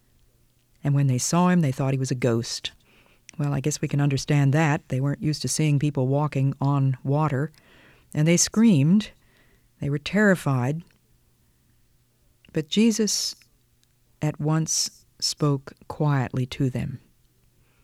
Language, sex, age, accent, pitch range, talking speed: English, female, 50-69, American, 130-165 Hz, 140 wpm